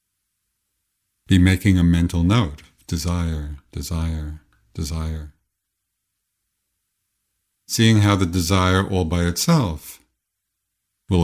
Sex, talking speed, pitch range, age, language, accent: male, 85 wpm, 85-100 Hz, 50-69, English, American